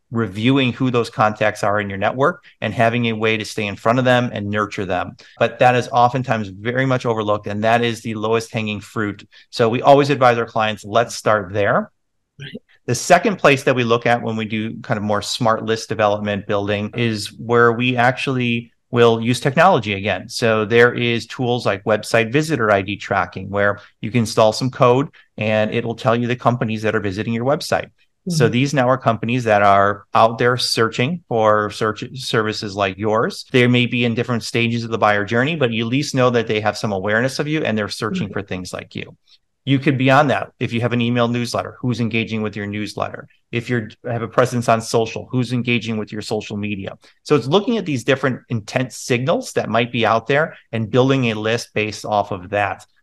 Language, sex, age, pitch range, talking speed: English, male, 30-49, 105-125 Hz, 215 wpm